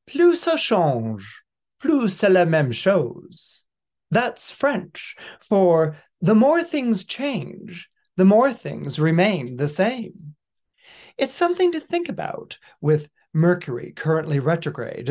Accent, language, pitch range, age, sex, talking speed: American, English, 145-195 Hz, 40-59, male, 120 wpm